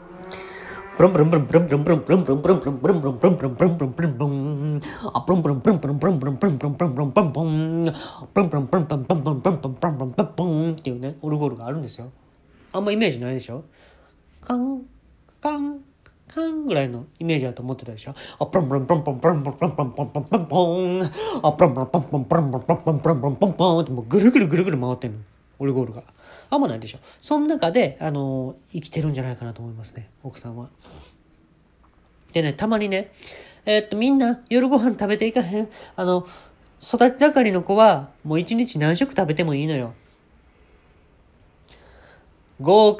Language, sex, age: Japanese, male, 30-49